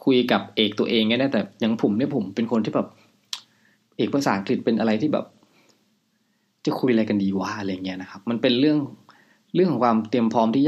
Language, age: Thai, 20-39